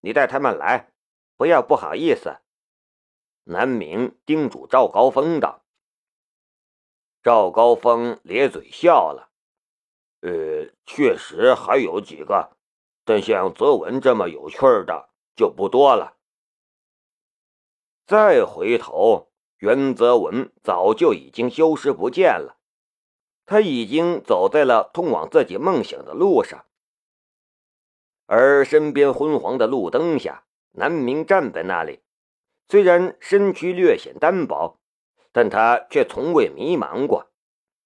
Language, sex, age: Chinese, male, 50-69